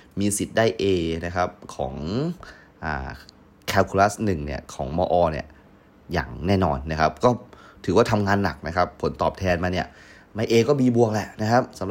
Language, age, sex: Thai, 30-49, male